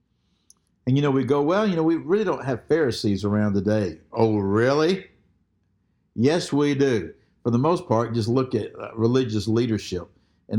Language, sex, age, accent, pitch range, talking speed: English, male, 60-79, American, 100-120 Hz, 175 wpm